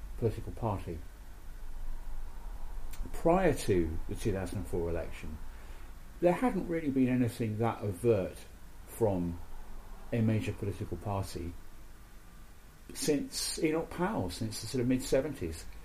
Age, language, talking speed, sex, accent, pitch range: 40-59, English, 115 wpm, male, British, 90-115 Hz